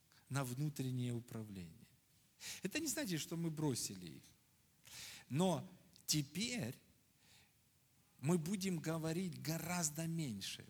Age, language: 50-69, Russian